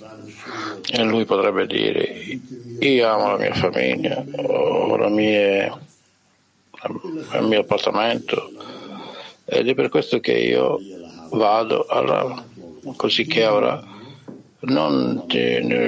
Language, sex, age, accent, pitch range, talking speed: Italian, male, 60-79, native, 115-175 Hz, 105 wpm